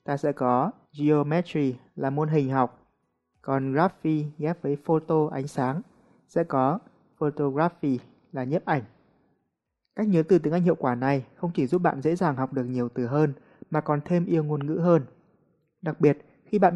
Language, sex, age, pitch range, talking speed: Vietnamese, male, 20-39, 140-175 Hz, 185 wpm